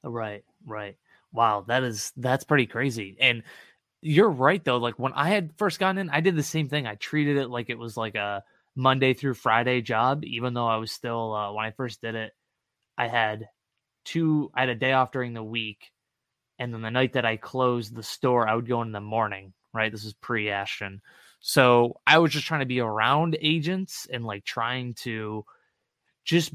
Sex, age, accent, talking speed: male, 20-39, American, 210 wpm